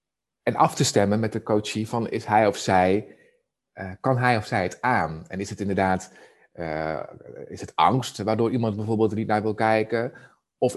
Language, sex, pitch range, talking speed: Dutch, male, 95-110 Hz, 200 wpm